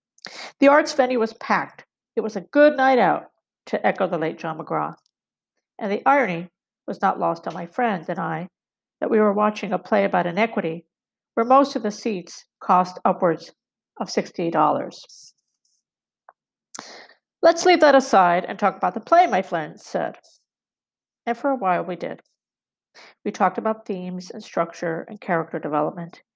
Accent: American